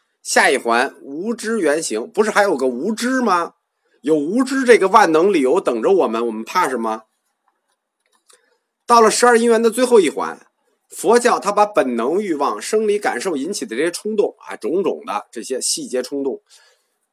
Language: Chinese